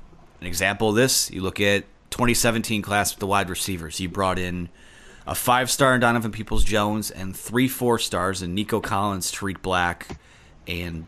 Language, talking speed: English, 160 wpm